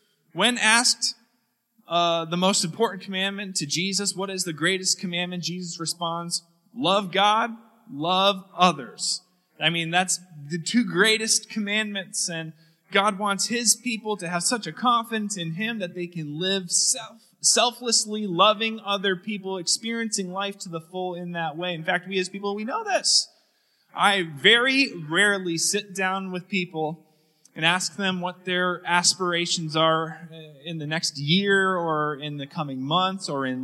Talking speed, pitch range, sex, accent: 155 wpm, 160-205 Hz, male, American